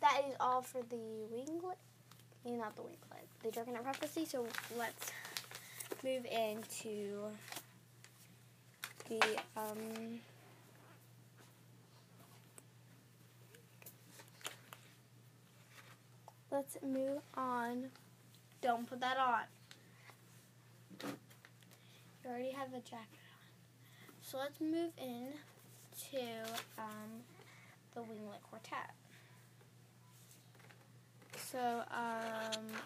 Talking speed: 75 wpm